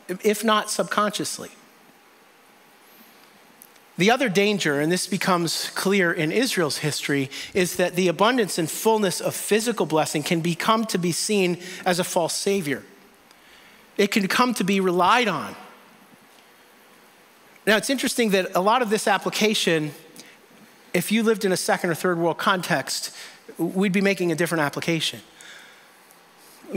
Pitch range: 165-210 Hz